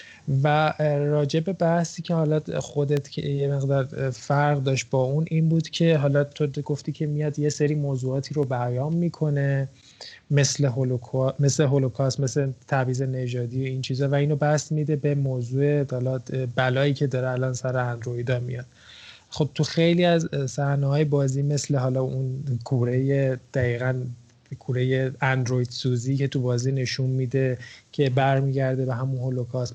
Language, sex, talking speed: Persian, male, 150 wpm